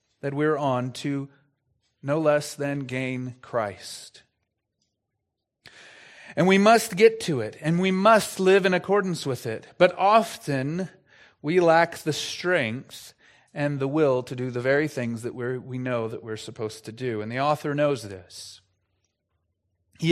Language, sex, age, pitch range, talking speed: English, male, 30-49, 125-170 Hz, 150 wpm